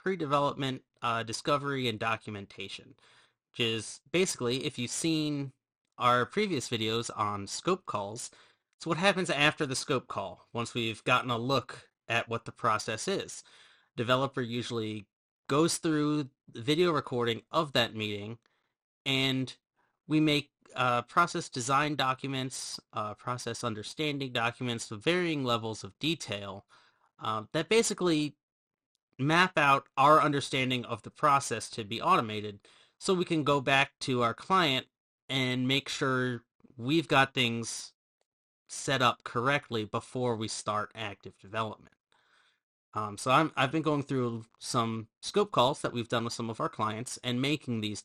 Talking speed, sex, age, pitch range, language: 140 wpm, male, 30-49, 115-140 Hz, English